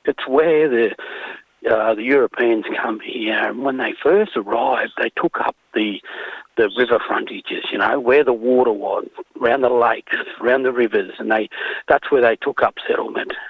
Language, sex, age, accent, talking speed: English, male, 40-59, Australian, 180 wpm